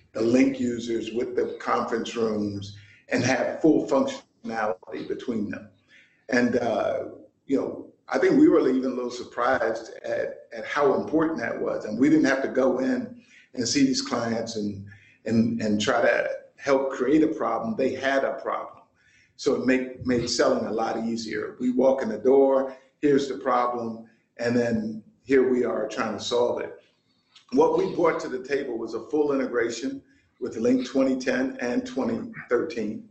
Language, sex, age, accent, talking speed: English, male, 50-69, American, 170 wpm